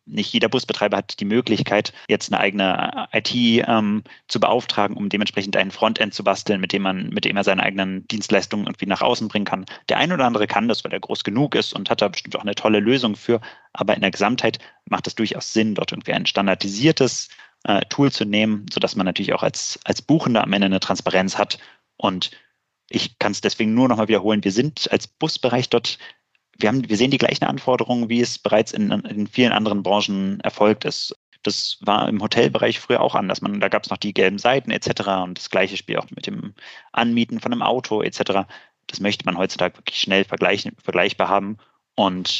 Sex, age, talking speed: male, 30-49, 210 wpm